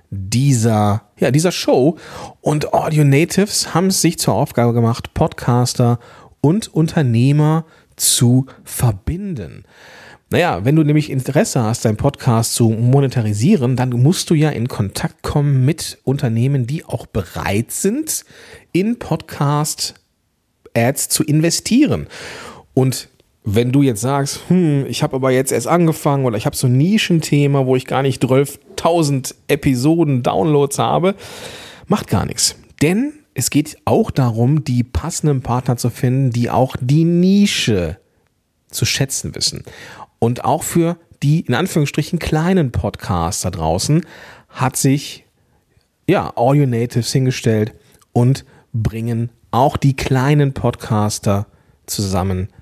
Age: 40-59